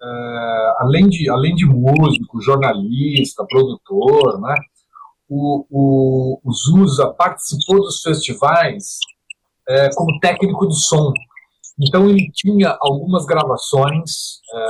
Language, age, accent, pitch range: Portuguese, 50-69, Brazilian, 130-170 Hz